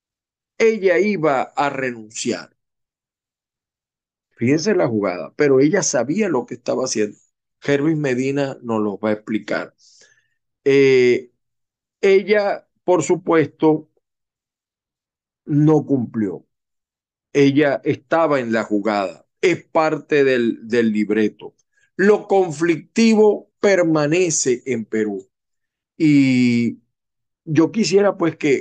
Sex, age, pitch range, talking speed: male, 50-69, 125-165 Hz, 100 wpm